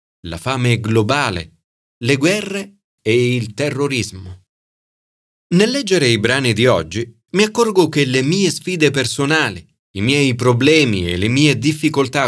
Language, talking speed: Italian, 135 wpm